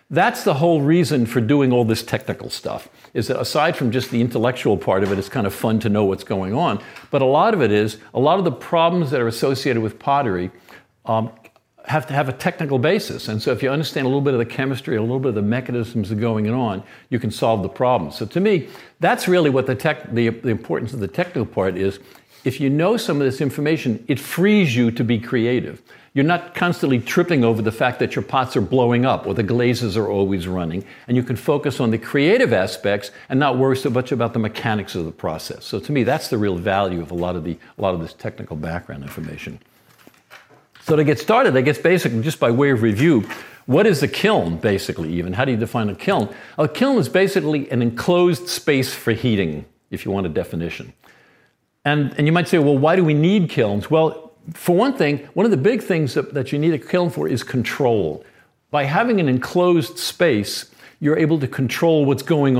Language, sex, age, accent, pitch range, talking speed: English, male, 60-79, American, 110-155 Hz, 235 wpm